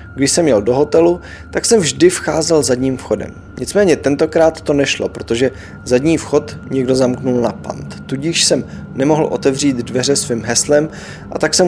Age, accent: 20-39, native